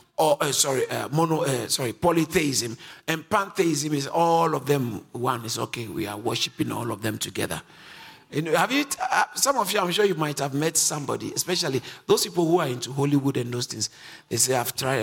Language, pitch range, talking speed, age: English, 130-175 Hz, 215 wpm, 50-69